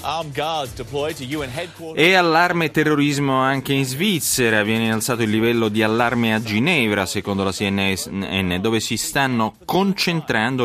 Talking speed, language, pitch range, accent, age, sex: 120 wpm, Italian, 100-135 Hz, native, 30-49, male